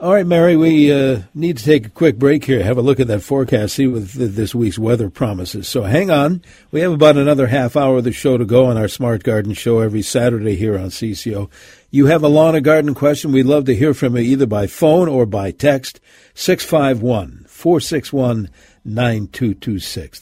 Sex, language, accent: male, English, American